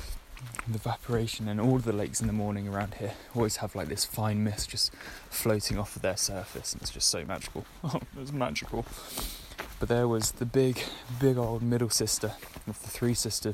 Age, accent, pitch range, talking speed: 10-29, British, 105-130 Hz, 195 wpm